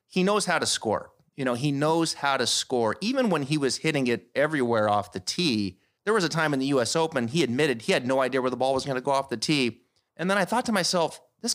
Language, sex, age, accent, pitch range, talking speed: English, male, 30-49, American, 125-170 Hz, 275 wpm